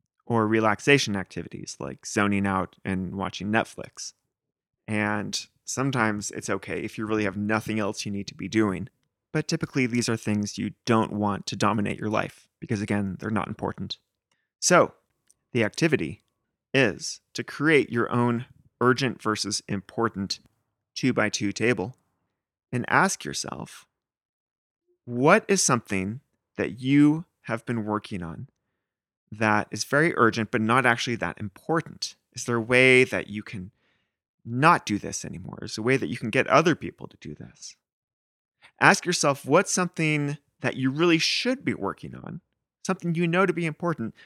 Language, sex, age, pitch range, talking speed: English, male, 30-49, 105-135 Hz, 160 wpm